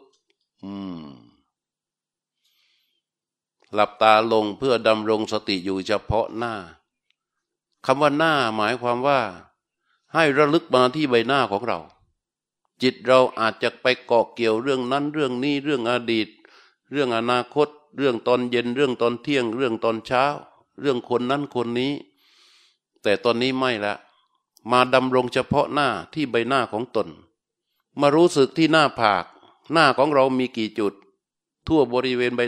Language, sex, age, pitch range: Thai, male, 60-79, 115-140 Hz